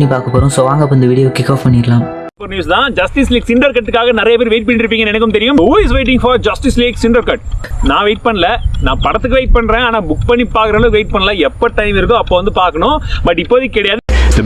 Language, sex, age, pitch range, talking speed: Malayalam, male, 30-49, 120-165 Hz, 225 wpm